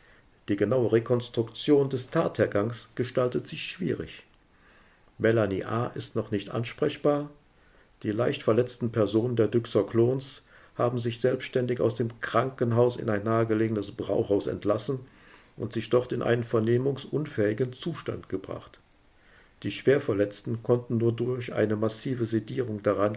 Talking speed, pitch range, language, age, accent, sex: 125 wpm, 110-130 Hz, German, 50-69, German, male